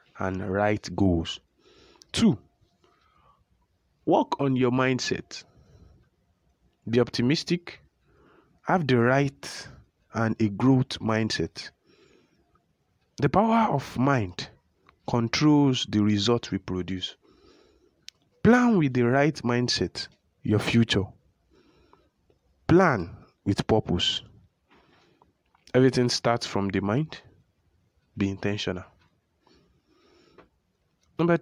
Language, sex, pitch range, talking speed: English, male, 100-140 Hz, 85 wpm